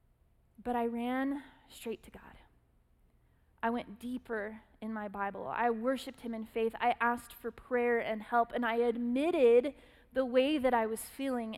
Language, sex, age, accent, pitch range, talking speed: English, female, 20-39, American, 220-255 Hz, 165 wpm